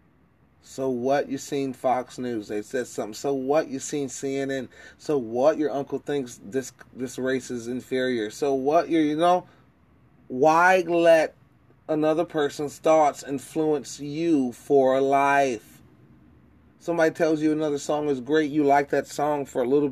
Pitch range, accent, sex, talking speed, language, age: 130-170 Hz, American, male, 160 wpm, English, 30-49